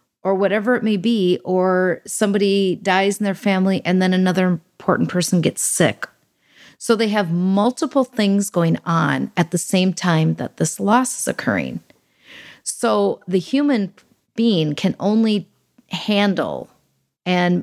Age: 40-59